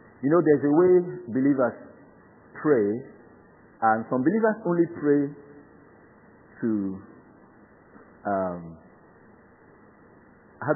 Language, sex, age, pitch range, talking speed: English, male, 50-69, 110-185 Hz, 85 wpm